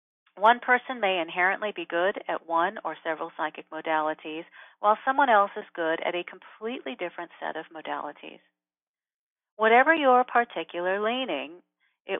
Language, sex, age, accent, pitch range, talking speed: English, female, 40-59, American, 165-215 Hz, 145 wpm